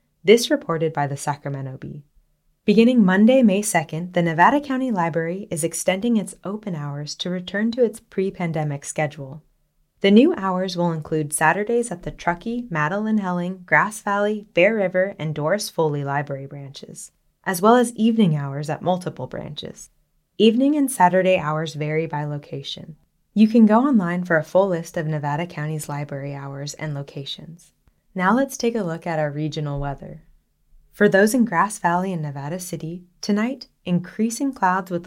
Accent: American